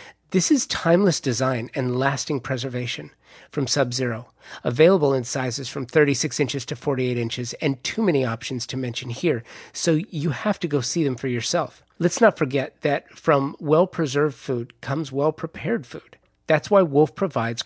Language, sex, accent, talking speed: English, male, American, 165 wpm